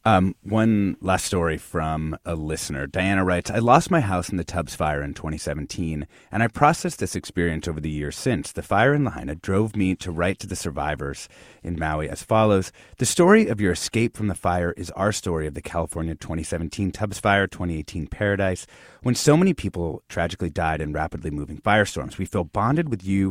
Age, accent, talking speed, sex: 30-49, American, 200 wpm, male